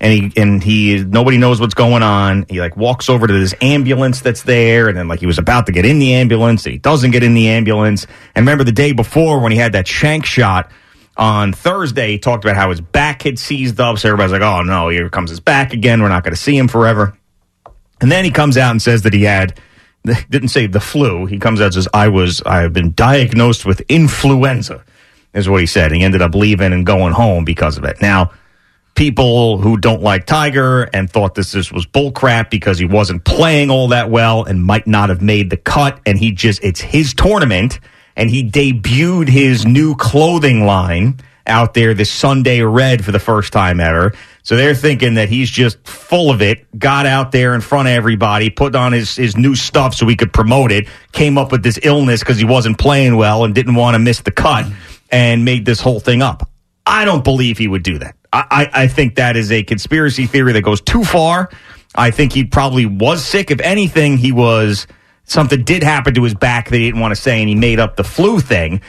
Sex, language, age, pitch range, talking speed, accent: male, English, 30-49, 105-135 Hz, 230 wpm, American